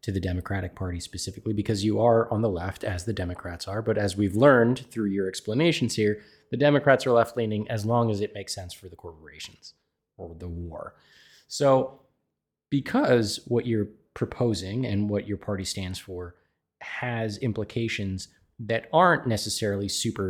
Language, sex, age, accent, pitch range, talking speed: English, male, 20-39, American, 95-120 Hz, 170 wpm